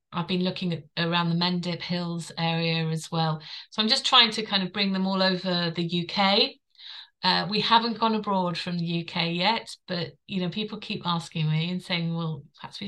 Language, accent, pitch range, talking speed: English, British, 165-195 Hz, 210 wpm